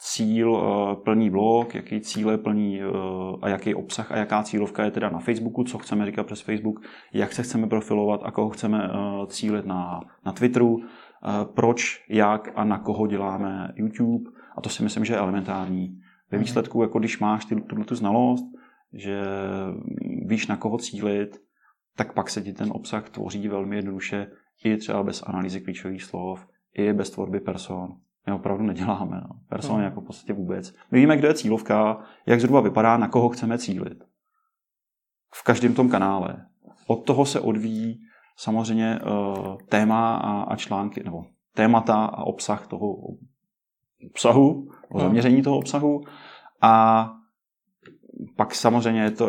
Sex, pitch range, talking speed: male, 100-115 Hz, 150 wpm